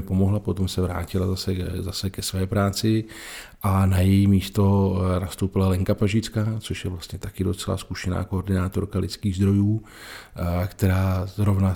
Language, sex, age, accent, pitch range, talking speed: Czech, male, 40-59, native, 95-100 Hz, 140 wpm